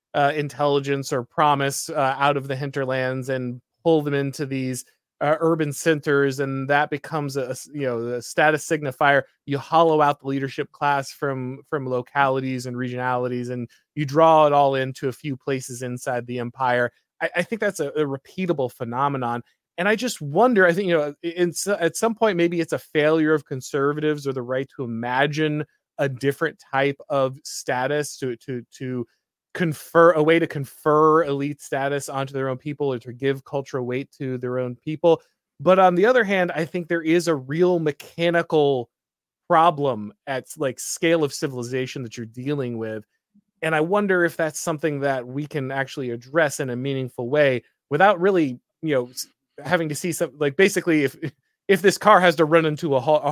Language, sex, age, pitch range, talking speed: English, male, 20-39, 130-160 Hz, 185 wpm